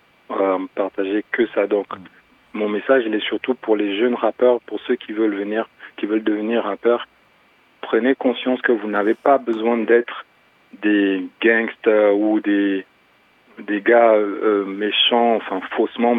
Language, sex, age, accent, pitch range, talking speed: French, male, 40-59, French, 100-115 Hz, 150 wpm